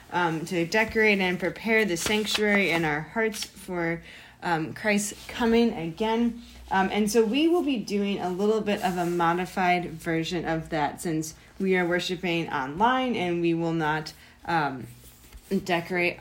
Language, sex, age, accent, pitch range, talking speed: English, female, 20-39, American, 170-215 Hz, 155 wpm